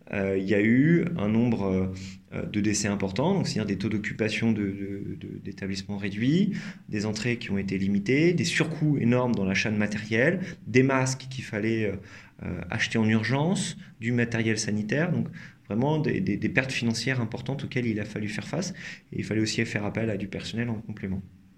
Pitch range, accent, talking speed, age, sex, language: 105-130 Hz, French, 195 wpm, 20-39, male, French